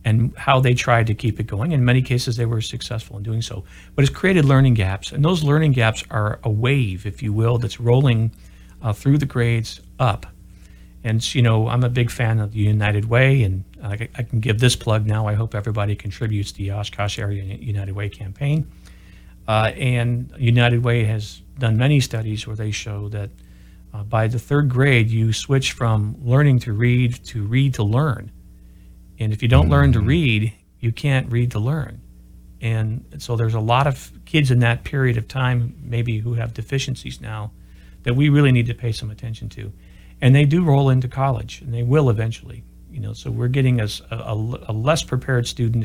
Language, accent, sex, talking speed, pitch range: English, American, male, 205 wpm, 105-125 Hz